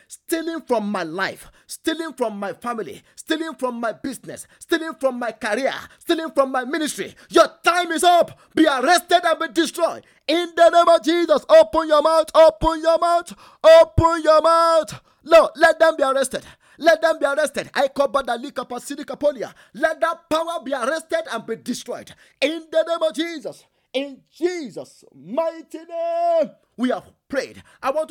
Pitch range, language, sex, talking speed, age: 205-325 Hz, English, male, 165 wpm, 30-49